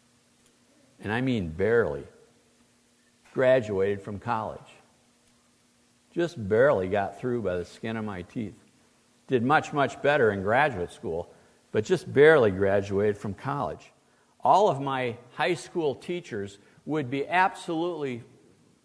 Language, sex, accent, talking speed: English, male, American, 125 wpm